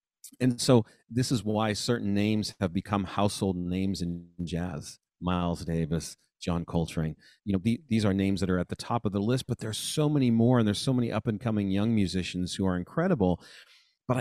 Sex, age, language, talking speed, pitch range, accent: male, 40-59, English, 195 wpm, 95-125 Hz, American